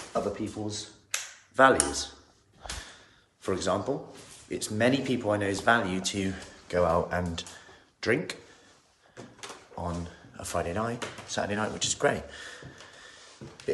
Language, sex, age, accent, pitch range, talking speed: English, male, 30-49, British, 90-115 Hz, 115 wpm